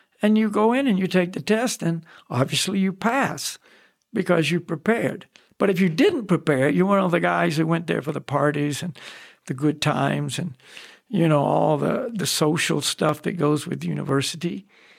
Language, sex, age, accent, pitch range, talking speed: English, male, 60-79, American, 160-200 Hz, 190 wpm